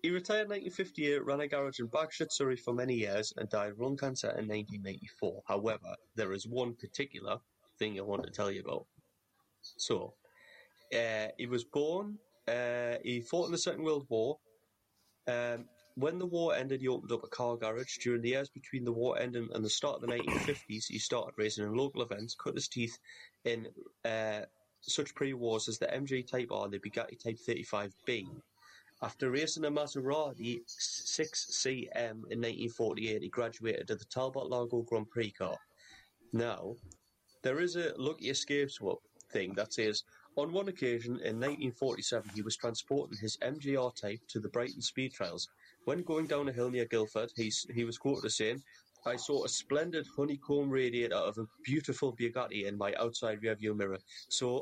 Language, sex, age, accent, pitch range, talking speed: English, male, 30-49, British, 110-140 Hz, 180 wpm